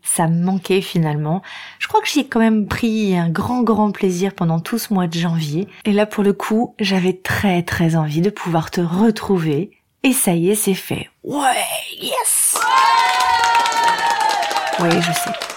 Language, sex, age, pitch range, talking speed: French, female, 30-49, 165-210 Hz, 175 wpm